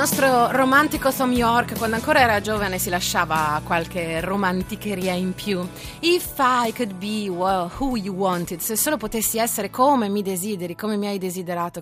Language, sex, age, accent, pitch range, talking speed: Italian, female, 30-49, native, 165-225 Hz, 160 wpm